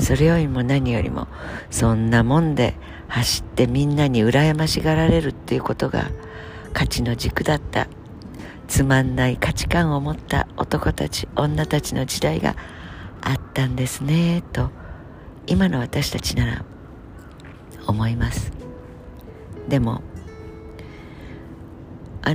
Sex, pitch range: female, 85-140 Hz